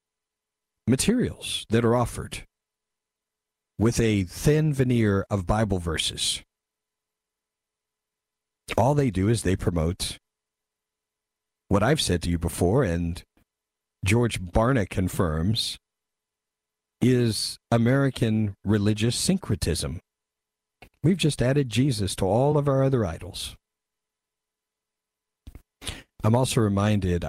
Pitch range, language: 70-110 Hz, English